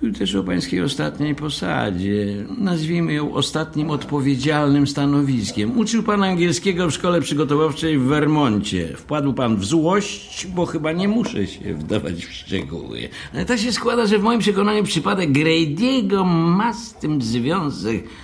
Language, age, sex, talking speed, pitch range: Polish, 60-79, male, 145 wpm, 95-155 Hz